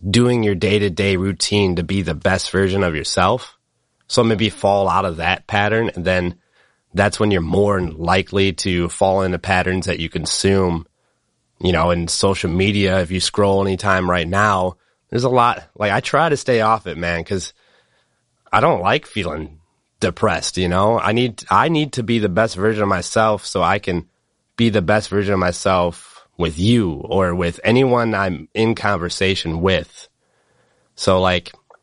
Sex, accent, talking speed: male, American, 175 wpm